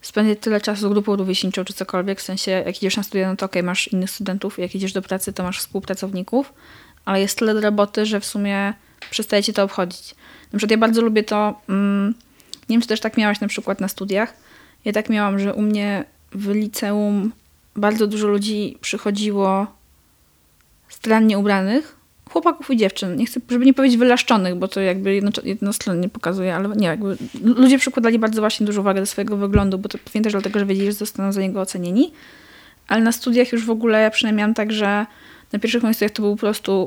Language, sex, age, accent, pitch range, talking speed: Polish, female, 20-39, native, 195-220 Hz, 205 wpm